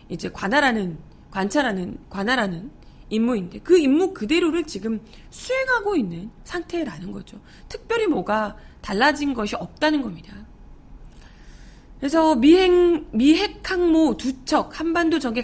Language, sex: Korean, female